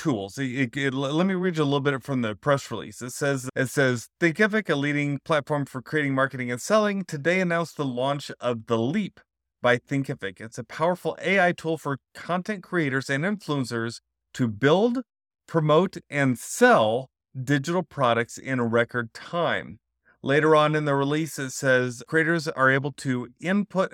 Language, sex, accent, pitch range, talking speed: English, male, American, 125-165 Hz, 175 wpm